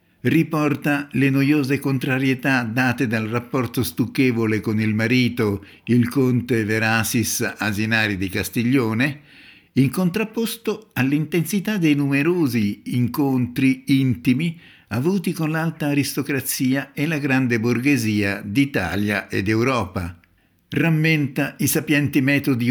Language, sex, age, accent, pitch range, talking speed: Italian, male, 60-79, native, 110-150 Hz, 105 wpm